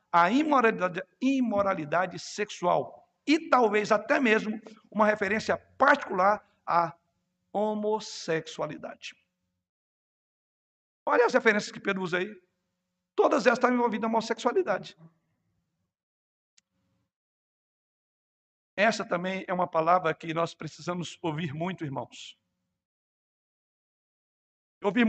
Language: Portuguese